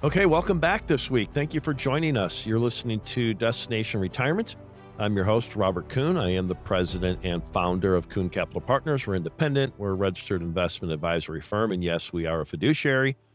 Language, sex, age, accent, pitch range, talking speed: English, male, 50-69, American, 90-115 Hz, 200 wpm